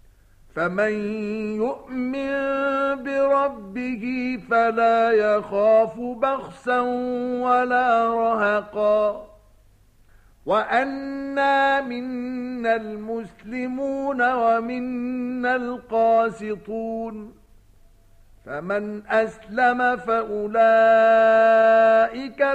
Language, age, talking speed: Arabic, 50-69, 45 wpm